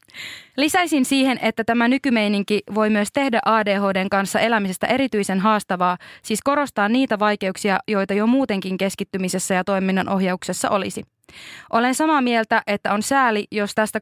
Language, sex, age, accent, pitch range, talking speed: Finnish, female, 20-39, native, 195-255 Hz, 135 wpm